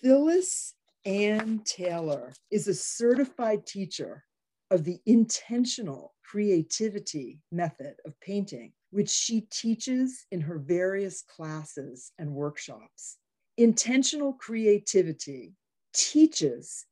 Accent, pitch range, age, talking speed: American, 170-245 Hz, 50-69, 90 wpm